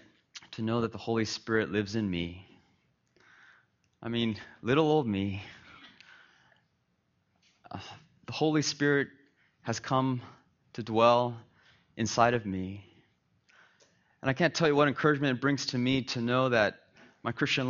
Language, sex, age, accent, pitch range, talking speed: English, male, 30-49, American, 105-125 Hz, 135 wpm